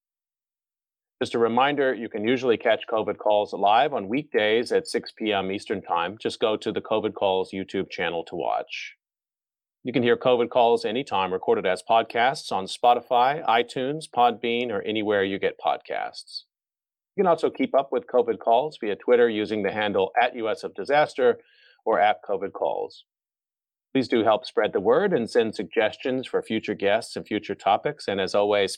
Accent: American